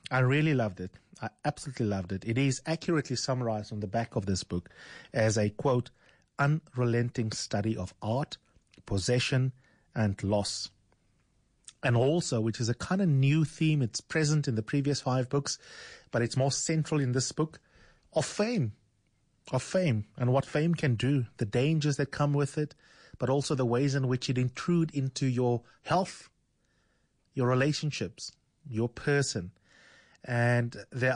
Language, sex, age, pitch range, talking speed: English, male, 30-49, 110-140 Hz, 160 wpm